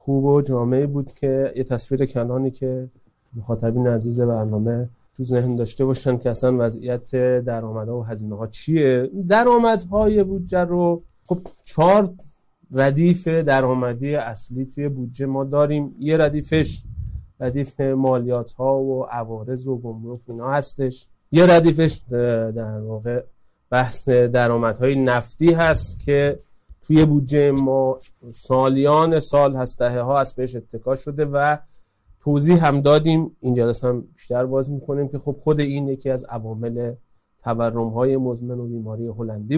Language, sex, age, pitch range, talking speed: Persian, male, 30-49, 120-145 Hz, 140 wpm